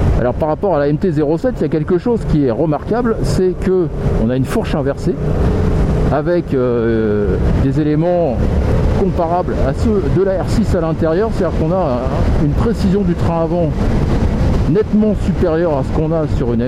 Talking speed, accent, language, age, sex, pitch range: 180 wpm, French, French, 60-79, male, 120-180 Hz